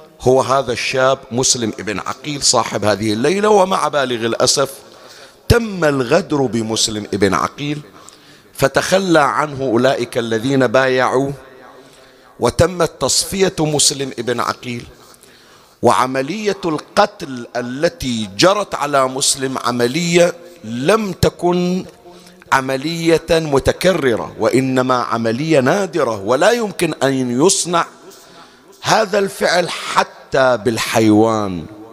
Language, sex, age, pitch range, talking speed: Arabic, male, 50-69, 120-165 Hz, 90 wpm